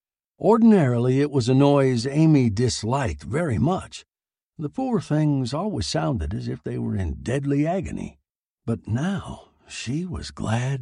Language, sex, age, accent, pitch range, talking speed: English, male, 60-79, American, 95-150 Hz, 145 wpm